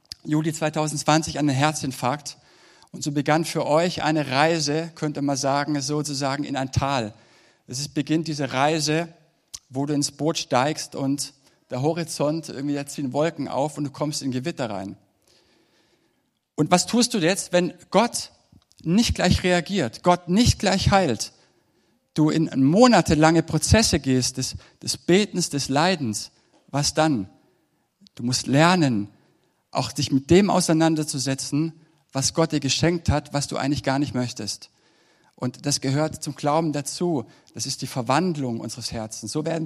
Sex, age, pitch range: male, 60-79, 140-160 Hz